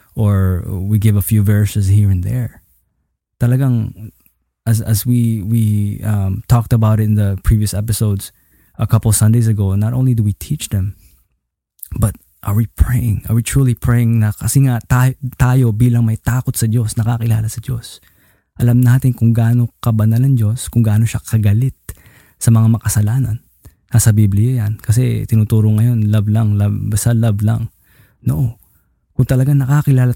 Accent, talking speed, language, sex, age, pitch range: native, 165 wpm, Filipino, male, 20-39, 105-125 Hz